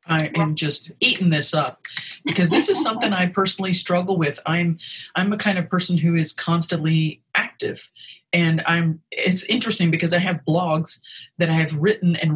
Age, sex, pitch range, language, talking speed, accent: 40-59, female, 155-185 Hz, English, 180 wpm, American